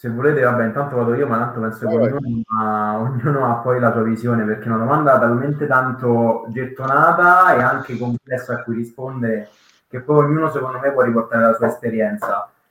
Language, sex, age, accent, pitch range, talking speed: Italian, male, 20-39, native, 115-135 Hz, 195 wpm